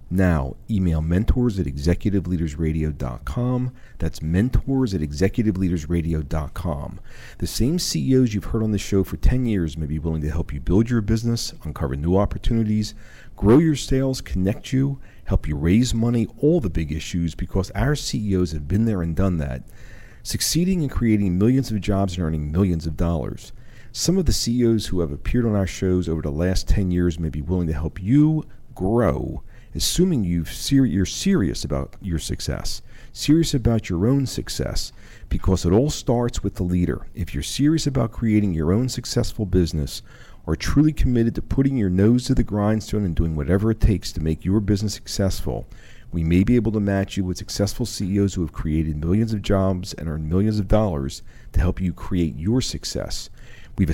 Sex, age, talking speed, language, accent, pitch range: male, 40-59, 180 wpm, English, American, 85-115 Hz